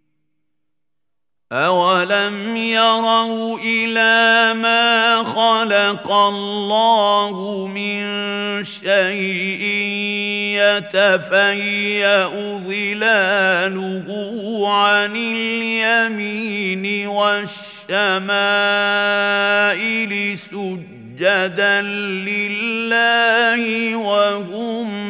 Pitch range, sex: 180-205 Hz, male